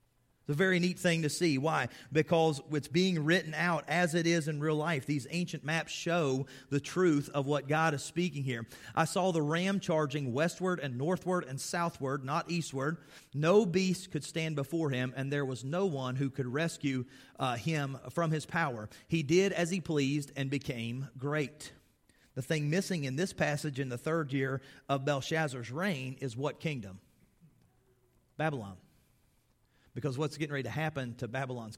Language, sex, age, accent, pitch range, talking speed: English, male, 40-59, American, 130-170 Hz, 180 wpm